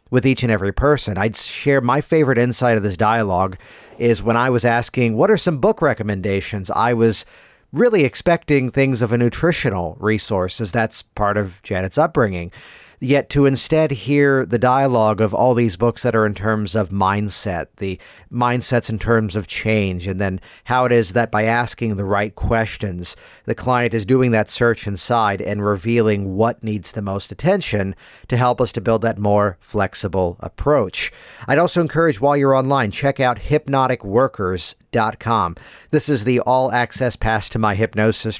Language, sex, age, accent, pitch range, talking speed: English, male, 50-69, American, 105-130 Hz, 175 wpm